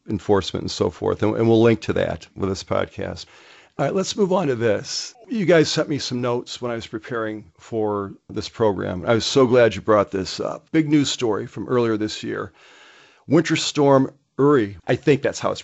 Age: 50-69